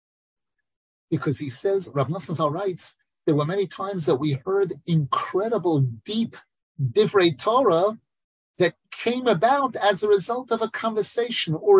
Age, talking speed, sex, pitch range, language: 50-69, 135 wpm, male, 145-195 Hz, English